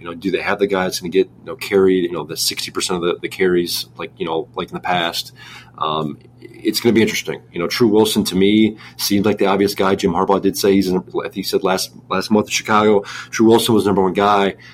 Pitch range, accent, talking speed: 90-110 Hz, American, 270 wpm